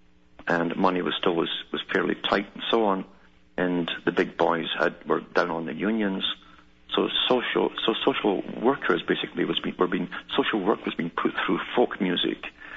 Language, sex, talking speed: English, male, 185 wpm